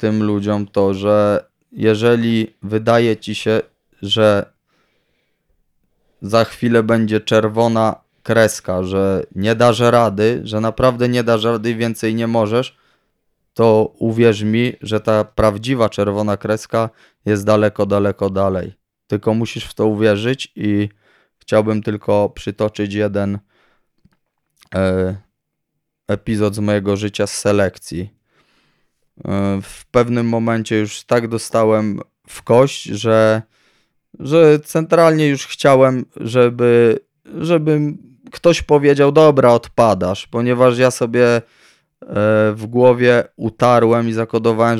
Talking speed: 110 wpm